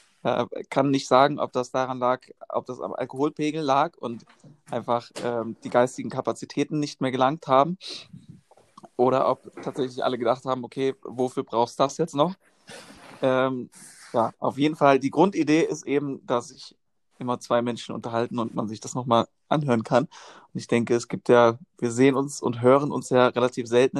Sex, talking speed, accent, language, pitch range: male, 185 wpm, German, German, 120-140 Hz